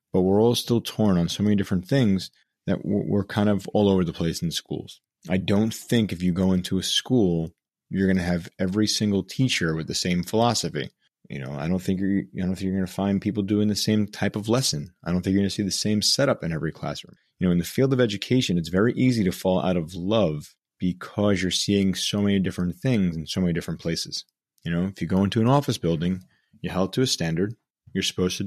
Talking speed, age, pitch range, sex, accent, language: 240 wpm, 30-49, 90-105 Hz, male, American, English